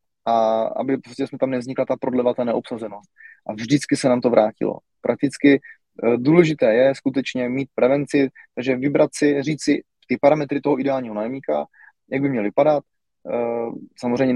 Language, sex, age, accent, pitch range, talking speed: Czech, male, 20-39, native, 115-130 Hz, 155 wpm